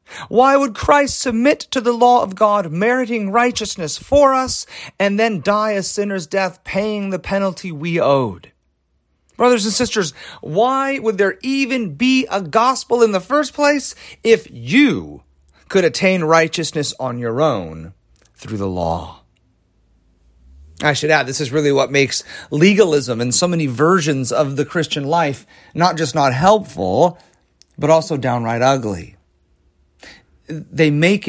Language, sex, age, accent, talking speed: English, male, 40-59, American, 145 wpm